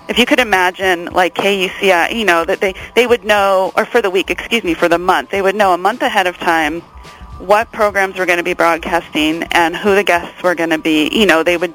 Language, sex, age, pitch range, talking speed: English, female, 30-49, 165-195 Hz, 250 wpm